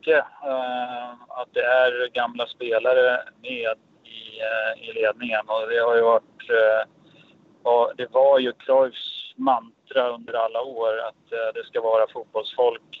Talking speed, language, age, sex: 150 wpm, Swedish, 30-49, male